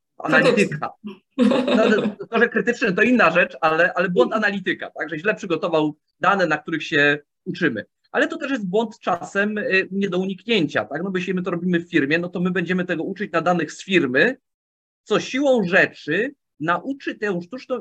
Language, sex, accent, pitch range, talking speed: English, male, Polish, 165-220 Hz, 180 wpm